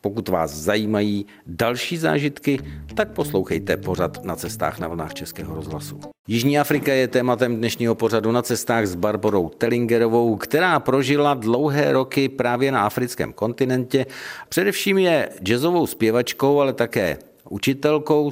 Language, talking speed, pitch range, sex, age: Czech, 130 wpm, 105-135 Hz, male, 50-69